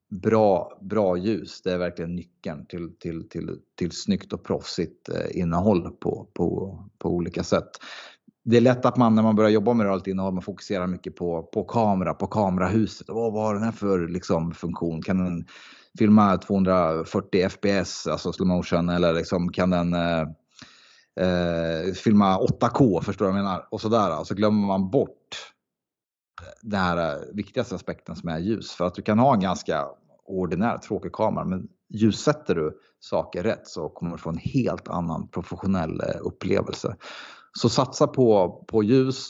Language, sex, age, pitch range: Swedish, male, 30-49, 85-110 Hz